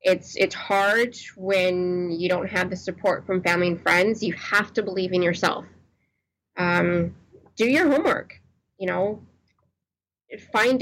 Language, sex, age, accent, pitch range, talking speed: English, female, 20-39, American, 175-205 Hz, 145 wpm